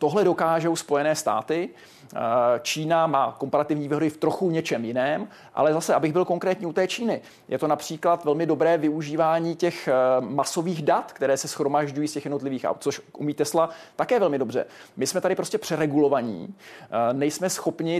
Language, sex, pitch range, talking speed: Czech, male, 150-170 Hz, 165 wpm